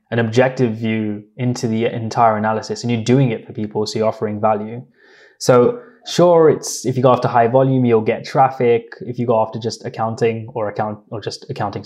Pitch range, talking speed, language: 110-125 Hz, 200 wpm, English